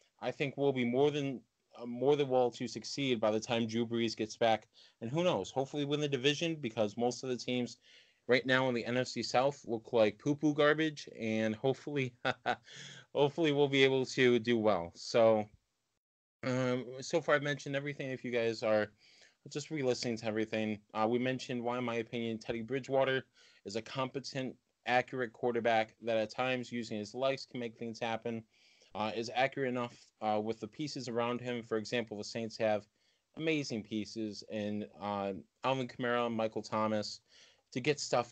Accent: American